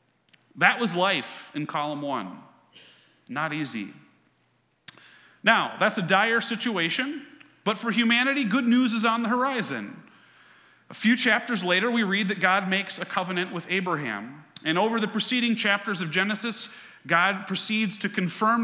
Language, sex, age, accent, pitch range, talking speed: English, male, 40-59, American, 185-235 Hz, 150 wpm